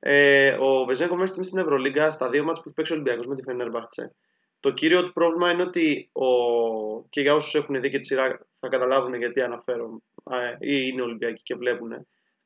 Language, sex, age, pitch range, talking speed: Greek, male, 20-39, 135-190 Hz, 200 wpm